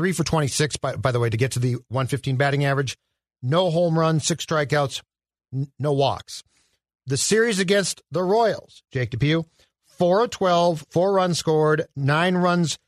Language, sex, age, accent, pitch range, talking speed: English, male, 50-69, American, 135-180 Hz, 165 wpm